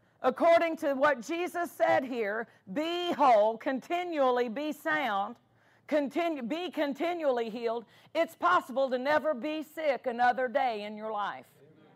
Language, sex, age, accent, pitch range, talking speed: English, female, 50-69, American, 265-325 Hz, 125 wpm